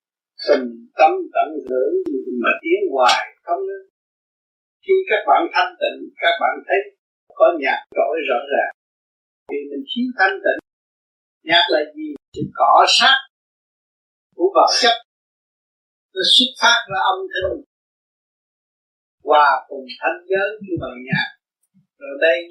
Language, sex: Vietnamese, male